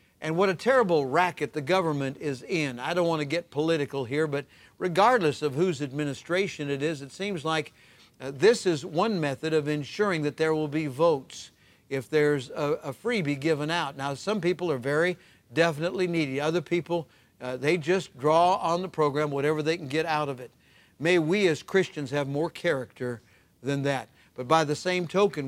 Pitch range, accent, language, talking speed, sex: 140-180 Hz, American, English, 195 wpm, male